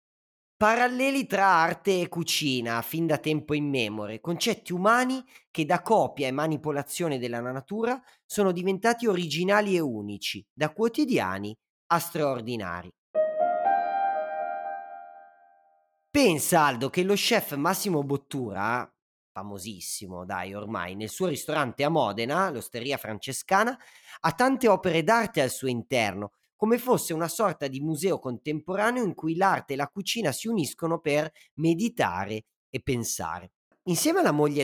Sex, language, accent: male, Italian, native